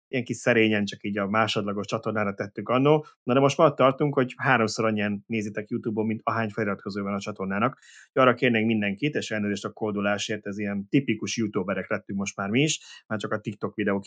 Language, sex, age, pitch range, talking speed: Hungarian, male, 30-49, 100-120 Hz, 205 wpm